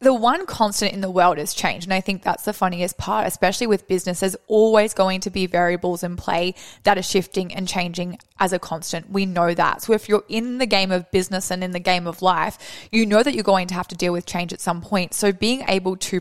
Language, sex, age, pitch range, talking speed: English, female, 20-39, 180-205 Hz, 255 wpm